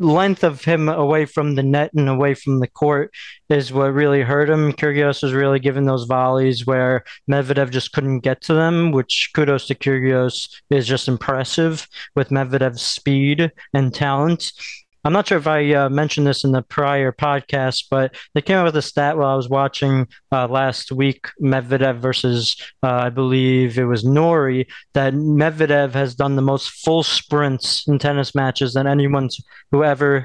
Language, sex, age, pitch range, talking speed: English, male, 20-39, 135-155 Hz, 180 wpm